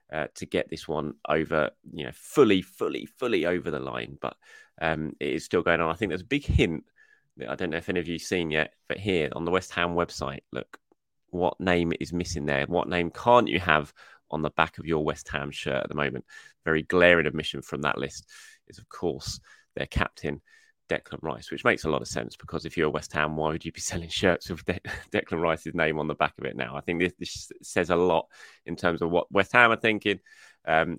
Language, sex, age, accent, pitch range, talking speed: English, male, 20-39, British, 75-95 Hz, 240 wpm